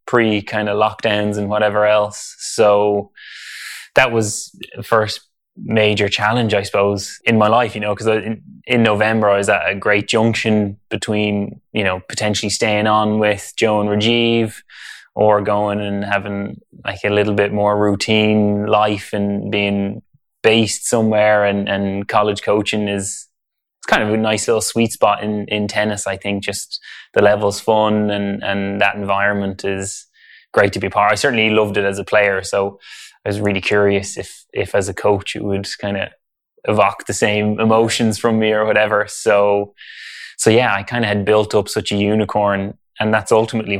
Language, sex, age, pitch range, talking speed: English, male, 10-29, 100-110 Hz, 180 wpm